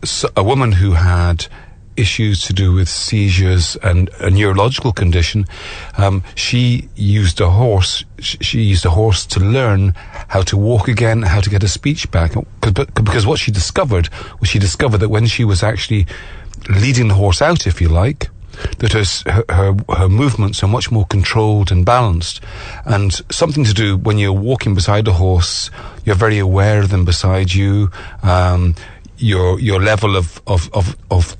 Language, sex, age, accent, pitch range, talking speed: English, male, 40-59, British, 90-110 Hz, 170 wpm